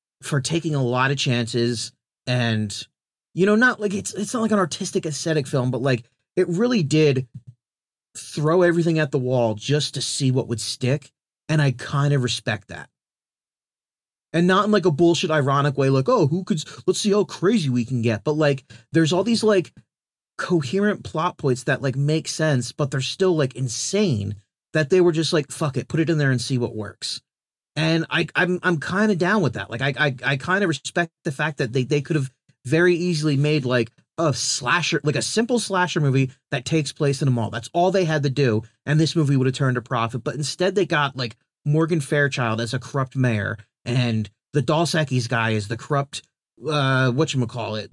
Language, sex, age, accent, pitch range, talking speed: English, male, 30-49, American, 125-165 Hz, 205 wpm